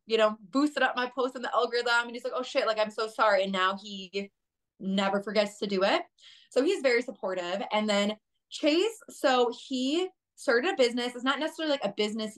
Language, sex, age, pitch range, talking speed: English, female, 20-39, 195-255 Hz, 215 wpm